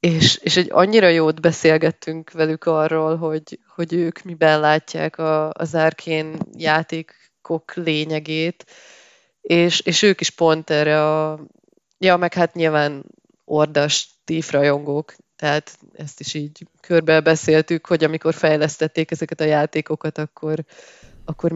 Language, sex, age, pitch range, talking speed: Hungarian, female, 20-39, 155-170 Hz, 120 wpm